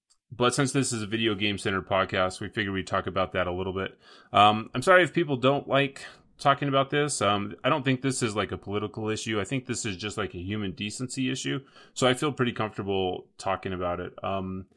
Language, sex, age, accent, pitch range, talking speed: English, male, 30-49, American, 95-125 Hz, 230 wpm